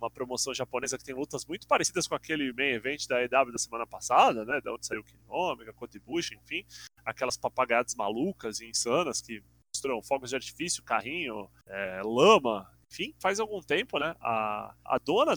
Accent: Brazilian